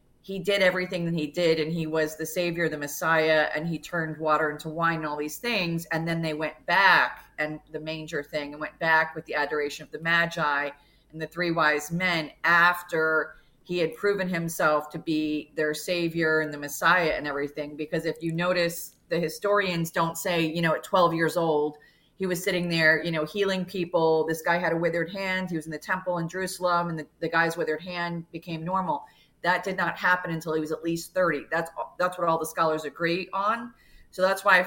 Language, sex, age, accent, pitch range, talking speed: English, female, 30-49, American, 155-175 Hz, 215 wpm